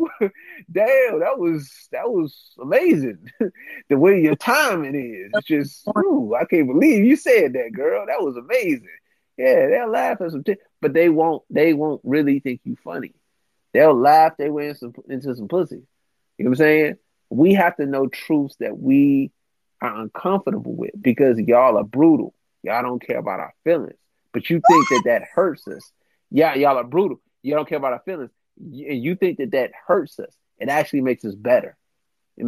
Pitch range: 130-200 Hz